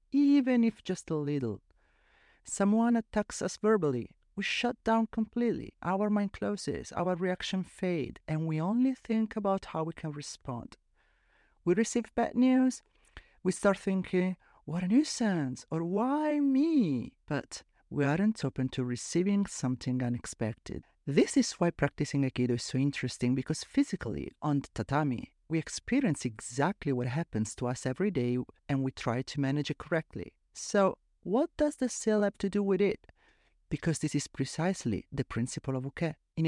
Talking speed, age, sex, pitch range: 160 wpm, 40-59, male, 135-205 Hz